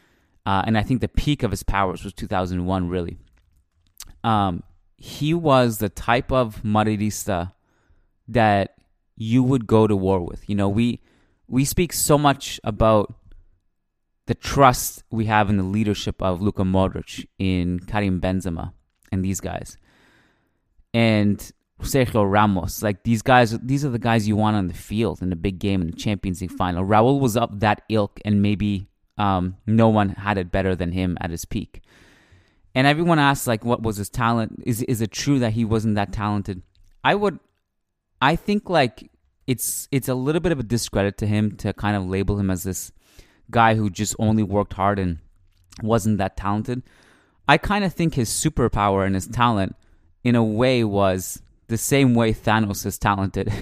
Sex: male